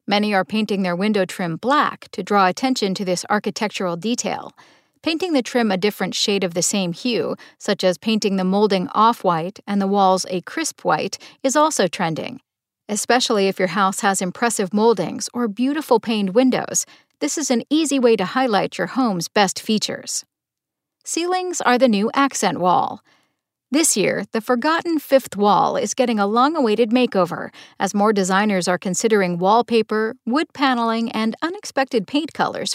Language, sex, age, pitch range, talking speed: English, female, 50-69, 195-260 Hz, 165 wpm